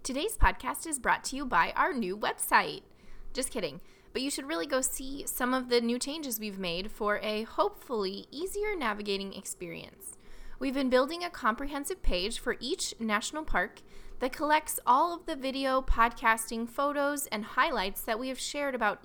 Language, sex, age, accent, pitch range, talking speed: English, female, 20-39, American, 205-265 Hz, 175 wpm